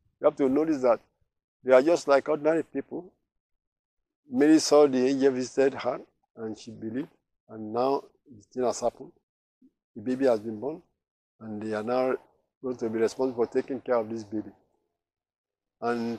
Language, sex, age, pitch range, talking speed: English, male, 50-69, 120-150 Hz, 170 wpm